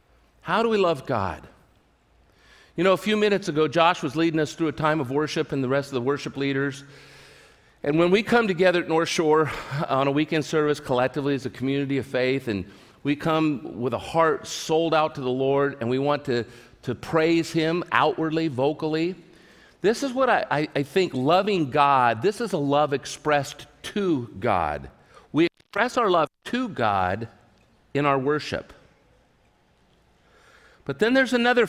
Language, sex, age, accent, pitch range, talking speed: English, male, 50-69, American, 130-175 Hz, 175 wpm